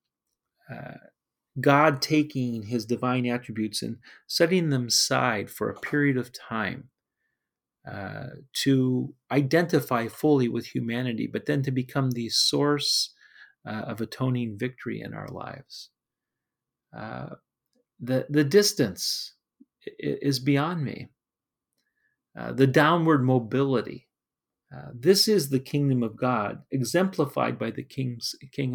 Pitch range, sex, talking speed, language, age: 120-150 Hz, male, 115 wpm, English, 40-59